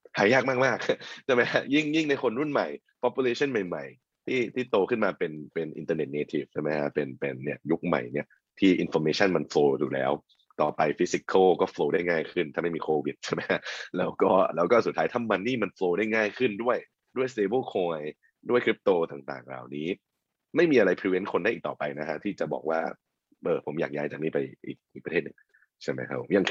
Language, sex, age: Thai, male, 20-39